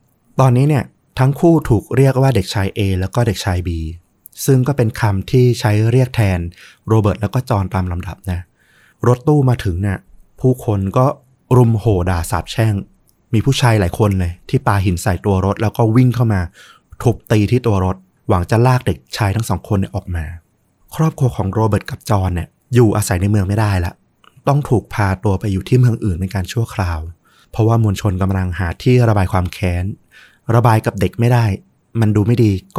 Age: 20-39